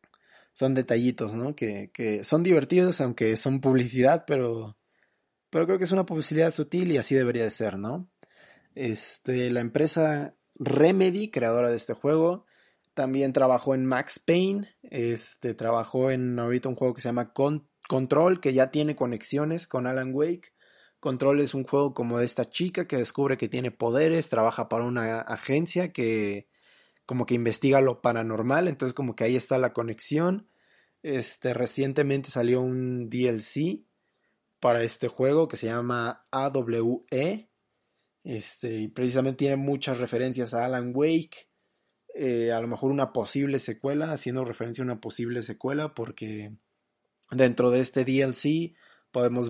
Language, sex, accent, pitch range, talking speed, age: Spanish, male, Mexican, 120-145 Hz, 150 wpm, 20-39